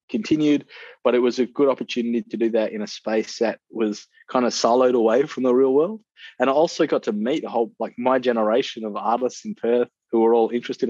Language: English